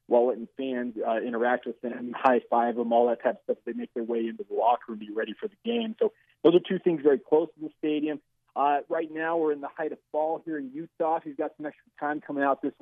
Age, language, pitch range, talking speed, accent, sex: 40-59, English, 125-150 Hz, 265 wpm, American, male